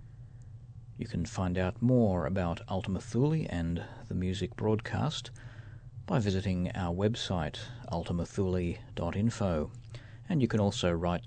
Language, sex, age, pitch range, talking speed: English, male, 40-59, 95-120 Hz, 115 wpm